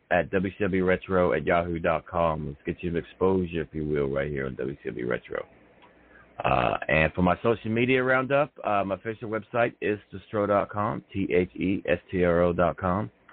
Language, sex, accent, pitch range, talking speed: English, male, American, 85-120 Hz, 145 wpm